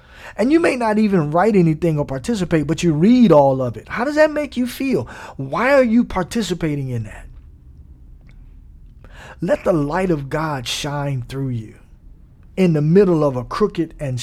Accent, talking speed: American, 175 wpm